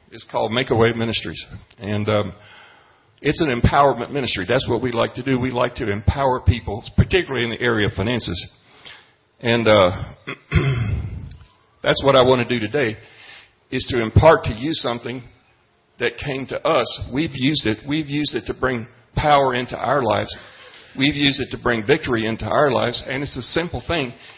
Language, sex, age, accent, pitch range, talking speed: English, male, 50-69, American, 115-145 Hz, 180 wpm